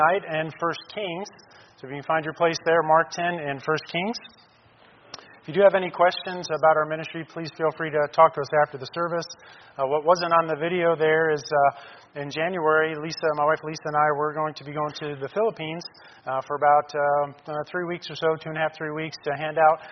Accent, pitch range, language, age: American, 145-170 Hz, English, 40-59